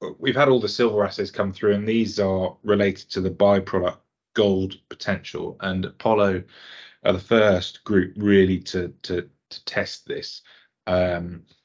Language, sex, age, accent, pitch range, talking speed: English, male, 30-49, British, 90-100 Hz, 150 wpm